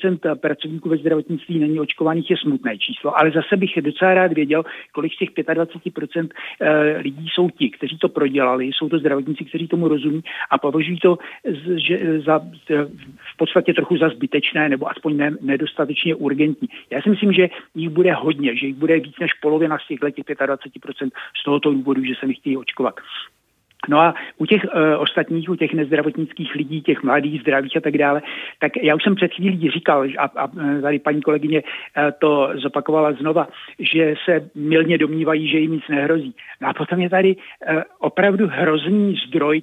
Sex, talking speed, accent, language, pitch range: male, 175 wpm, native, Czech, 150-175 Hz